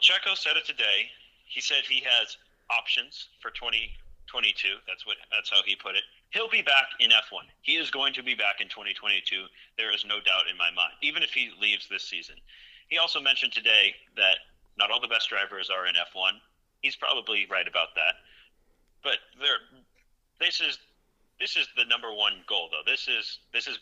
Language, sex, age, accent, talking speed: English, male, 30-49, American, 200 wpm